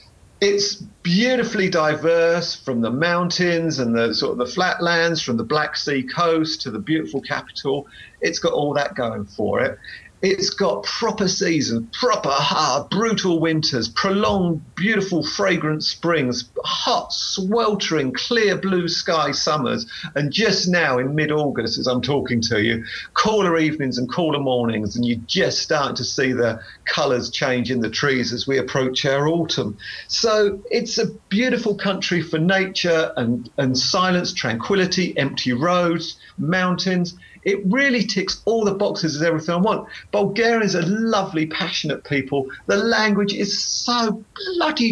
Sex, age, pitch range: male, 40-59, 135-195 Hz